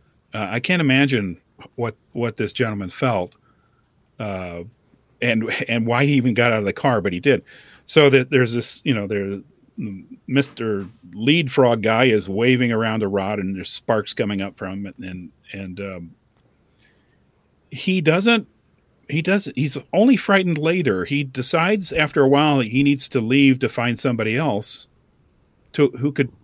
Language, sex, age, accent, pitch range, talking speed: English, male, 40-59, American, 100-140 Hz, 170 wpm